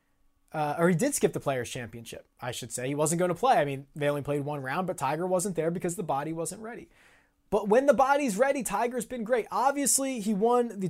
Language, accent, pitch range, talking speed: English, American, 165-225 Hz, 240 wpm